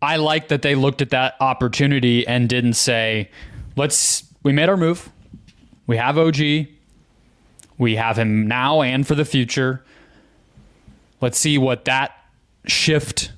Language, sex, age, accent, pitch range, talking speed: English, male, 20-39, American, 120-150 Hz, 145 wpm